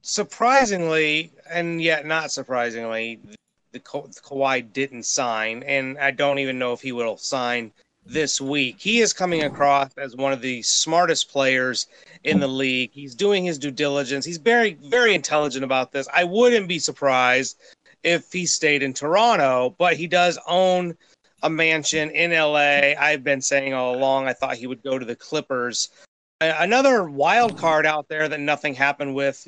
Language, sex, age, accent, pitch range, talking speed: English, male, 30-49, American, 135-170 Hz, 170 wpm